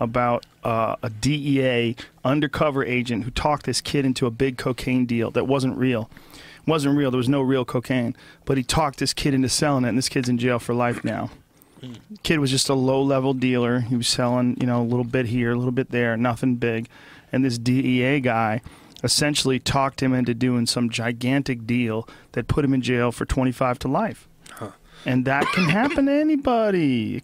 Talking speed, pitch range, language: 200 wpm, 125-150 Hz, English